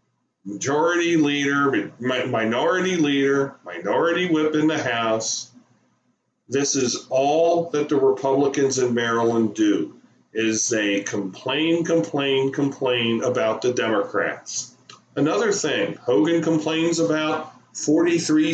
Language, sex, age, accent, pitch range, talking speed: English, male, 40-59, American, 125-170 Hz, 105 wpm